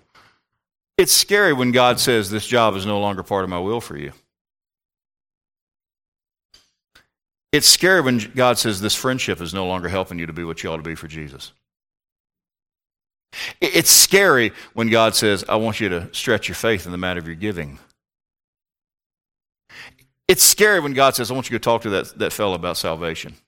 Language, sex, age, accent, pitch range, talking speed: English, male, 40-59, American, 95-120 Hz, 180 wpm